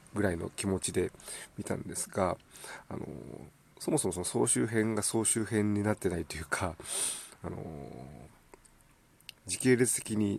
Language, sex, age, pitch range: Japanese, male, 40-59, 90-115 Hz